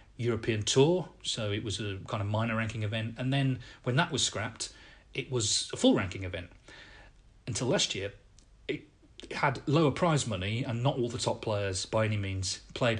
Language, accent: English, British